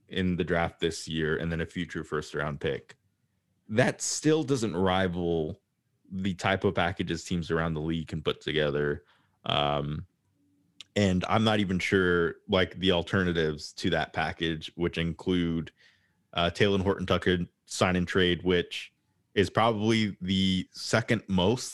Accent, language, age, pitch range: American, English, 20-39, 90-110 Hz